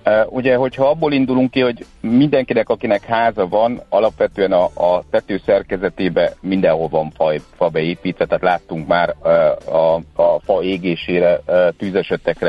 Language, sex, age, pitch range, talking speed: Hungarian, male, 60-79, 85-110 Hz, 140 wpm